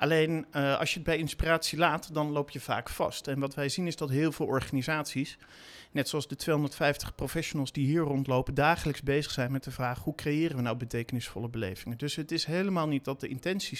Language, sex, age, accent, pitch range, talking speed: Dutch, male, 50-69, Dutch, 135-170 Hz, 220 wpm